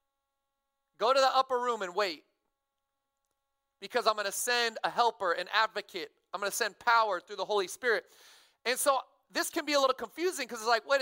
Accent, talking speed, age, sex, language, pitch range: American, 200 wpm, 30-49, male, English, 210-285 Hz